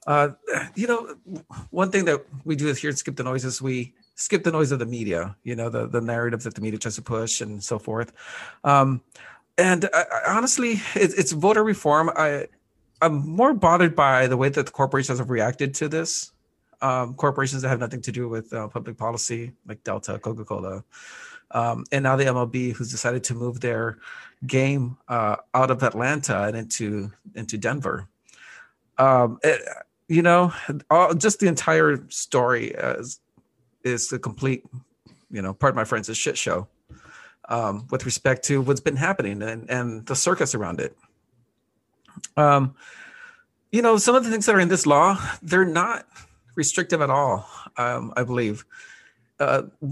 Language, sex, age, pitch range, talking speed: English, male, 40-59, 120-160 Hz, 180 wpm